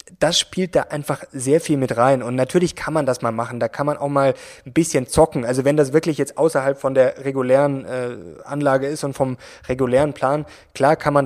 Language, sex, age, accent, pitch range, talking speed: German, male, 20-39, German, 130-150 Hz, 220 wpm